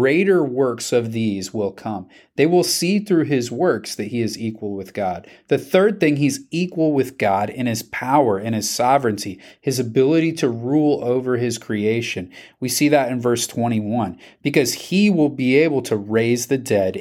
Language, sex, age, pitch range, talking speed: English, male, 30-49, 115-155 Hz, 185 wpm